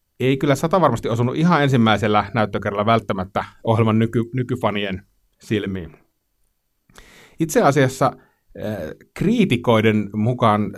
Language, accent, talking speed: Finnish, native, 90 wpm